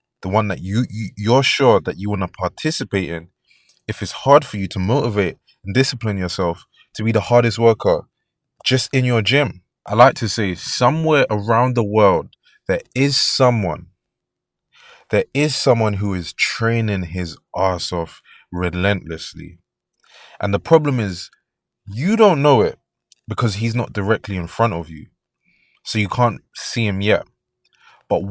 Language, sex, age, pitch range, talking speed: English, male, 20-39, 95-125 Hz, 165 wpm